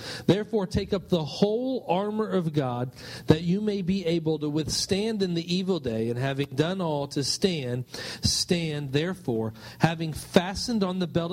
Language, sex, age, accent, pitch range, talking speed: English, male, 40-59, American, 120-170 Hz, 170 wpm